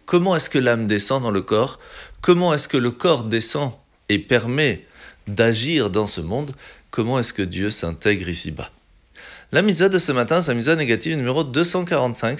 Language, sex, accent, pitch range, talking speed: French, male, French, 105-160 Hz, 180 wpm